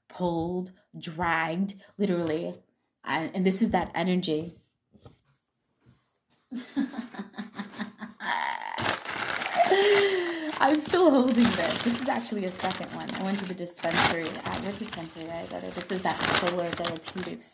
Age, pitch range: 20-39, 160-195 Hz